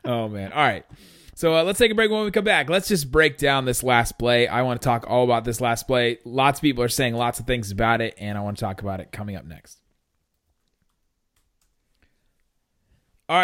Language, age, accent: English, 30-49, American